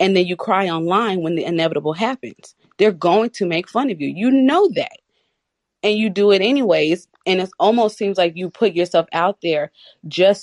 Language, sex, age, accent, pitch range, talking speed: English, female, 30-49, American, 175-215 Hz, 200 wpm